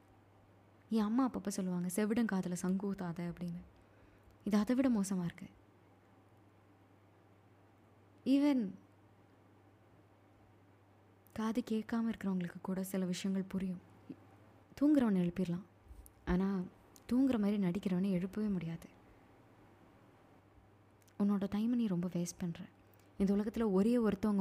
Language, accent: Tamil, native